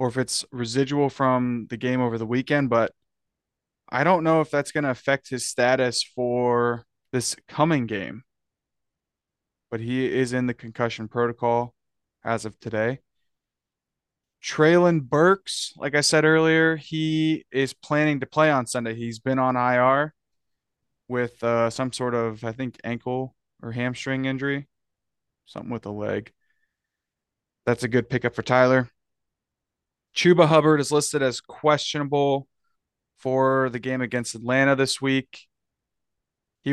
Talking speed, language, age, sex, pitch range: 140 wpm, English, 20-39, male, 115-140 Hz